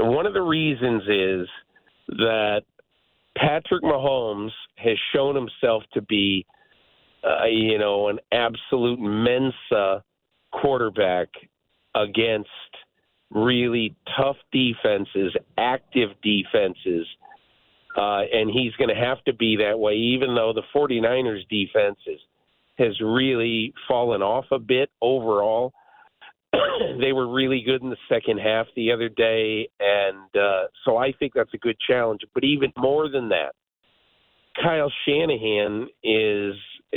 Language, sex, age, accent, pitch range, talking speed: English, male, 50-69, American, 105-135 Hz, 125 wpm